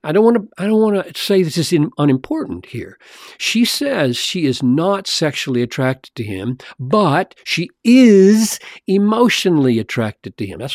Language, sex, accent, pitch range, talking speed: English, male, American, 115-160 Hz, 150 wpm